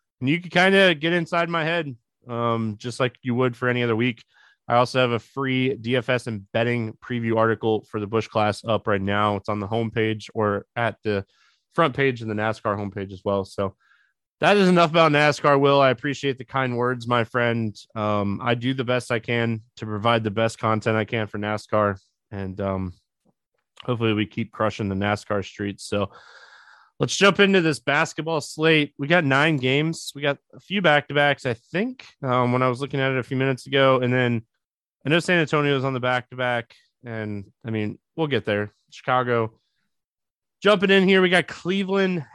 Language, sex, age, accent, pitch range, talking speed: English, male, 20-39, American, 110-145 Hz, 200 wpm